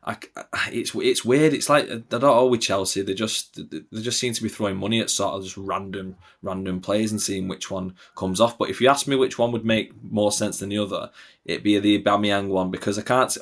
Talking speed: 240 wpm